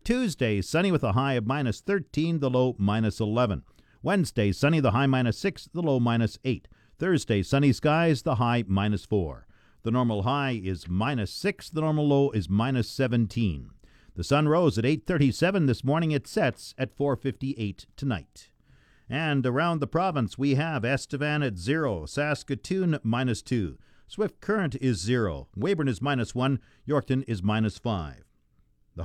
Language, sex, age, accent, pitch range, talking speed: English, male, 50-69, American, 110-155 Hz, 140 wpm